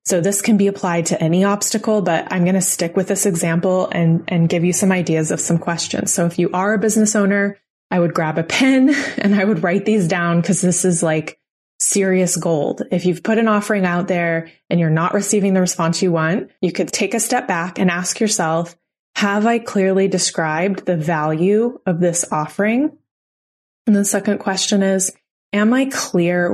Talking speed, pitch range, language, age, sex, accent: 205 wpm, 170-205 Hz, English, 20-39, female, American